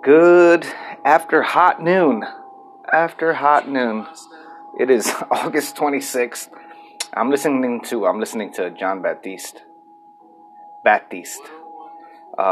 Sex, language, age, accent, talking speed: male, English, 30-49, American, 95 wpm